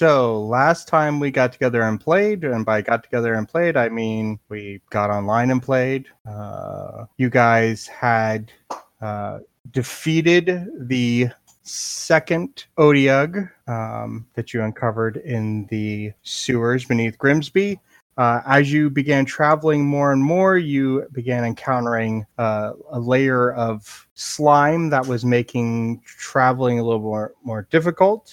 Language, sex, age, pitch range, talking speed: English, male, 30-49, 115-145 Hz, 135 wpm